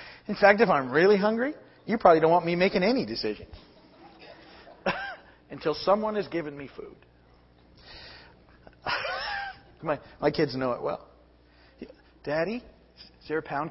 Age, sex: 50-69, male